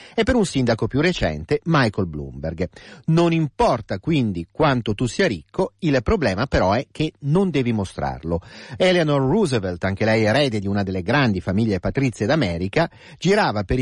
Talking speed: 160 wpm